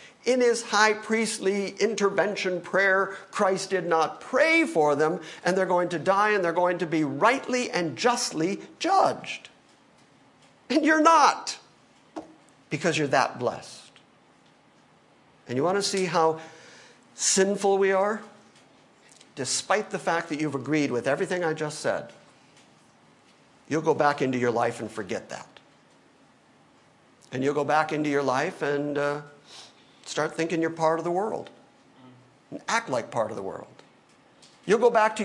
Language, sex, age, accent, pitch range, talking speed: English, male, 50-69, American, 155-210 Hz, 150 wpm